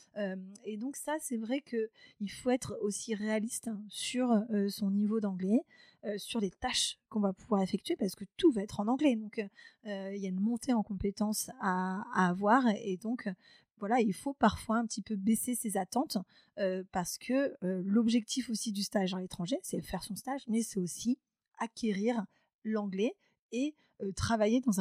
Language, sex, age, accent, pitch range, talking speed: French, female, 20-39, French, 195-230 Hz, 190 wpm